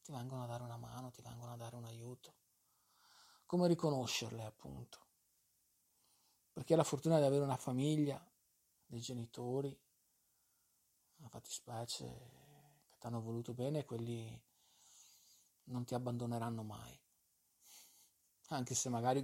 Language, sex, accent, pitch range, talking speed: Italian, male, native, 115-140 Hz, 130 wpm